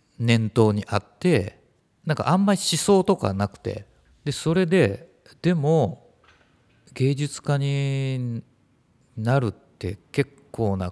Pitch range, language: 95-135 Hz, Japanese